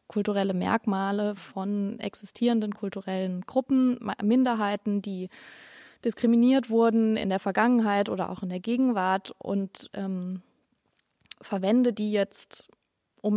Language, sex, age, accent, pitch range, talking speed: German, female, 20-39, German, 195-230 Hz, 110 wpm